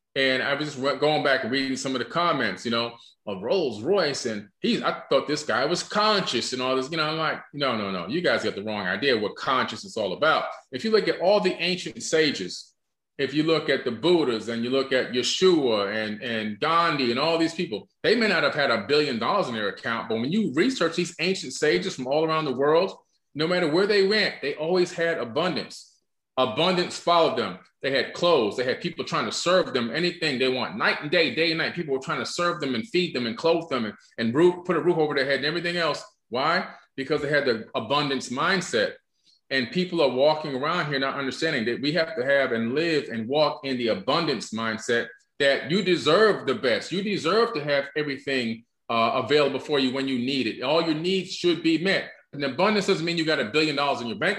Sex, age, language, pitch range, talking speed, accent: male, 30-49, English, 130-175 Hz, 235 wpm, American